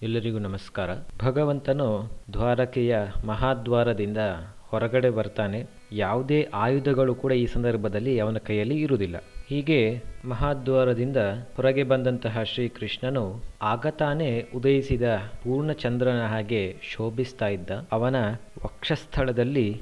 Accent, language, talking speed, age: native, Kannada, 90 wpm, 20-39